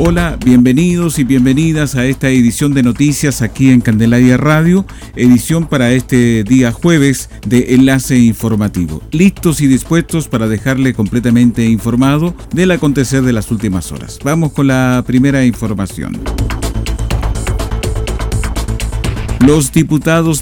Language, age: Spanish, 50-69